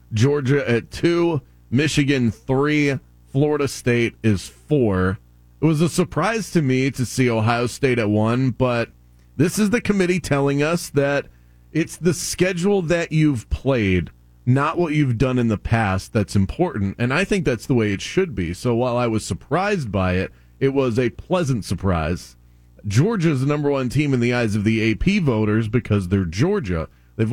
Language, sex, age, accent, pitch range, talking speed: English, male, 30-49, American, 105-145 Hz, 180 wpm